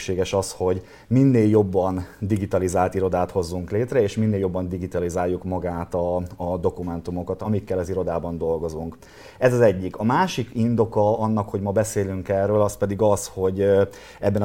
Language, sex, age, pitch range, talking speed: Hungarian, male, 30-49, 95-105 Hz, 150 wpm